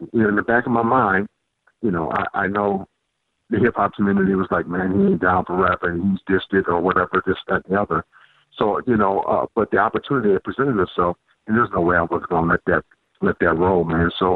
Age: 50-69